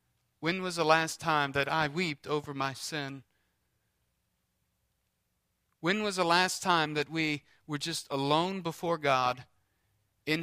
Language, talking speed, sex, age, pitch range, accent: English, 140 wpm, male, 40-59, 110-160 Hz, American